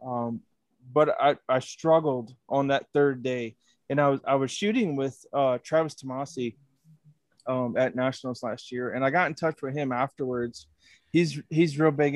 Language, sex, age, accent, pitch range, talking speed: English, male, 20-39, American, 125-145 Hz, 180 wpm